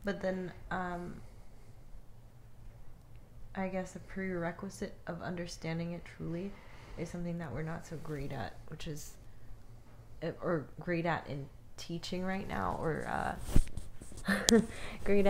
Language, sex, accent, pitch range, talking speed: English, female, American, 115-175 Hz, 120 wpm